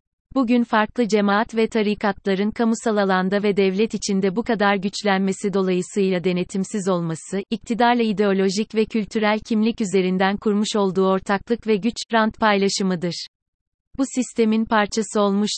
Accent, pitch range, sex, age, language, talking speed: native, 195-225 Hz, female, 30-49, Turkish, 125 wpm